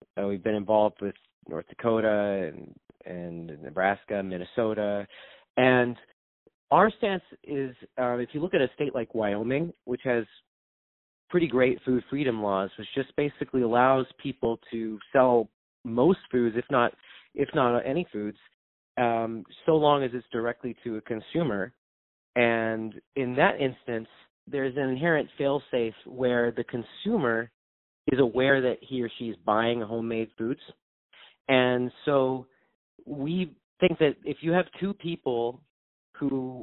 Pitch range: 115-135 Hz